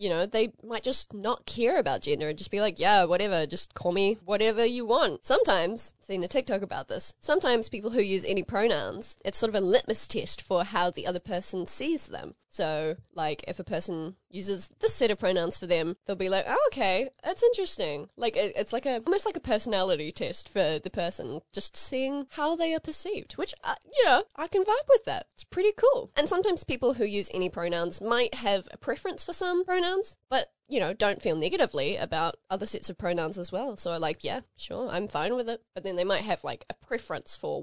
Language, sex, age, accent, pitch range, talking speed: English, female, 10-29, Australian, 180-250 Hz, 220 wpm